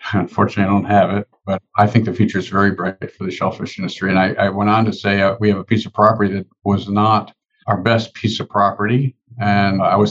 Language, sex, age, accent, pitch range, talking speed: English, male, 50-69, American, 100-120 Hz, 250 wpm